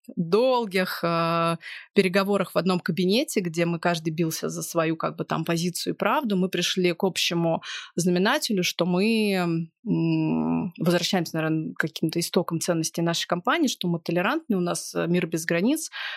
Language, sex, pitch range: Russian, female, 165-200 Hz